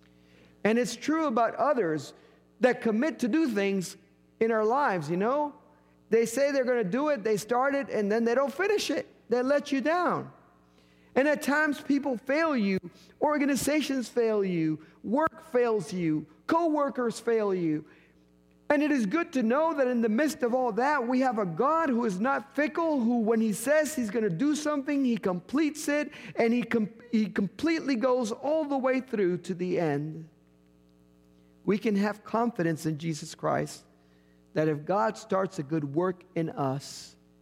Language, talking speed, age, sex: English, 180 wpm, 50-69, male